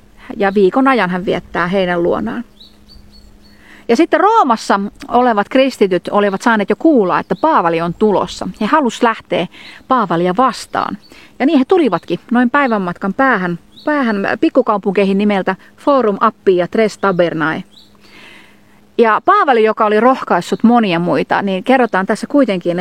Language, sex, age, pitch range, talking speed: Finnish, female, 30-49, 190-270 Hz, 135 wpm